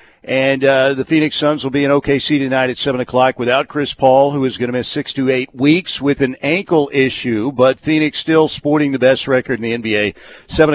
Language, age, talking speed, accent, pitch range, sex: English, 50-69, 225 wpm, American, 130-160 Hz, male